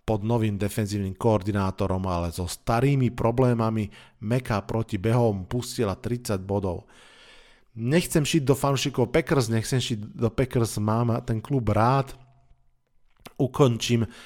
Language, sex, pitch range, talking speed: Slovak, male, 100-125 Hz, 120 wpm